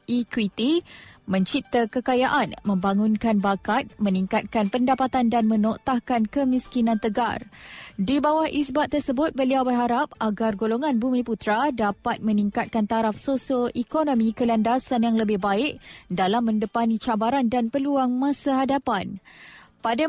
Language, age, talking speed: Malay, 20-39, 110 wpm